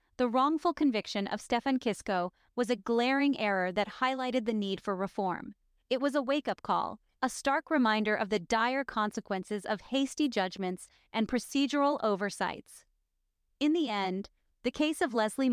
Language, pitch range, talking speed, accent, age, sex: English, 205-265 Hz, 160 wpm, American, 30-49, female